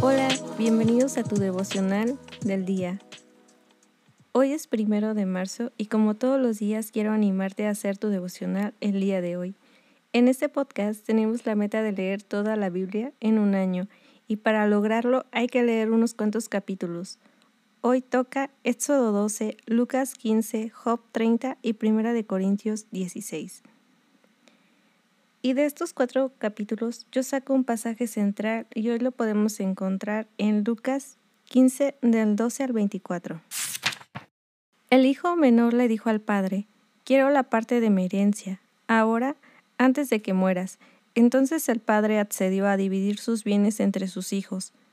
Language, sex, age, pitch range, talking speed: Spanish, female, 20-39, 205-250 Hz, 150 wpm